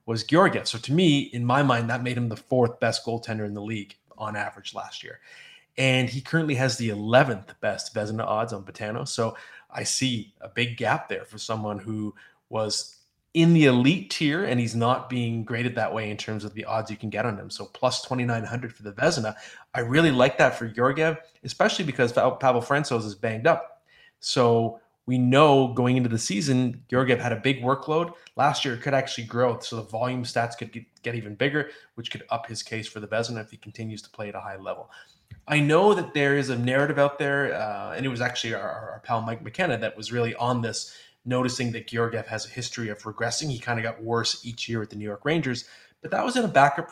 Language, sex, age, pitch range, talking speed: English, male, 20-39, 115-135 Hz, 230 wpm